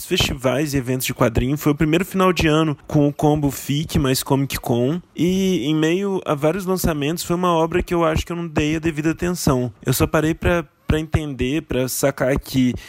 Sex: male